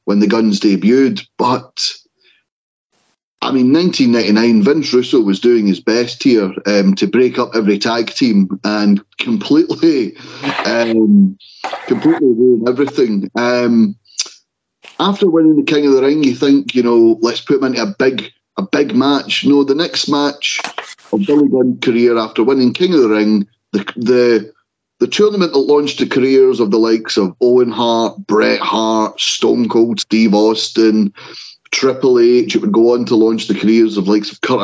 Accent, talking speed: British, 170 wpm